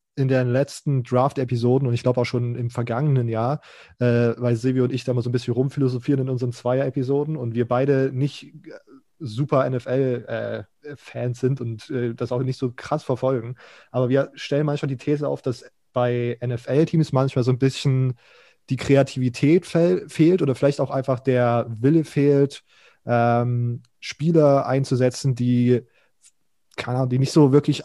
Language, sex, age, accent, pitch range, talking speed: German, male, 20-39, German, 120-140 Hz, 160 wpm